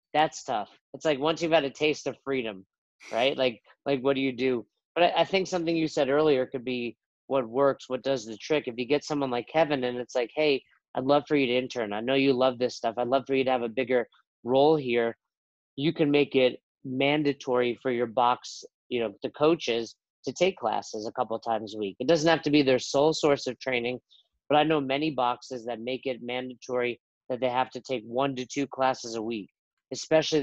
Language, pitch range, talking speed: English, 125-150 Hz, 235 wpm